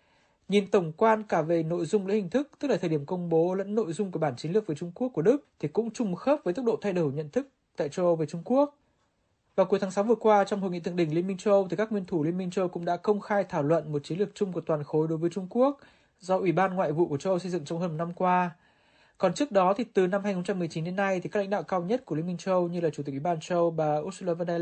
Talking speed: 315 wpm